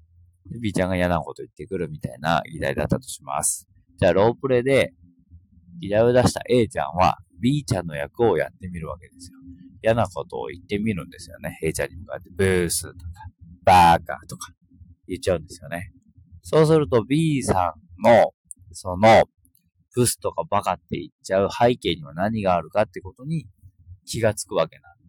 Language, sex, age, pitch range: Japanese, male, 40-59, 85-115 Hz